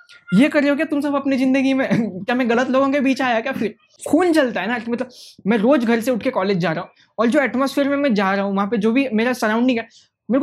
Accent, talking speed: Indian, 280 wpm